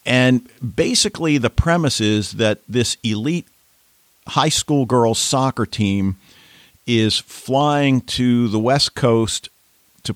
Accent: American